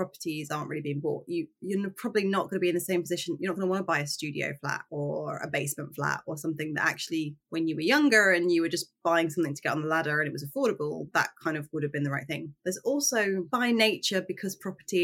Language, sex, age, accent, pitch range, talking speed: English, female, 20-39, British, 150-180 Hz, 265 wpm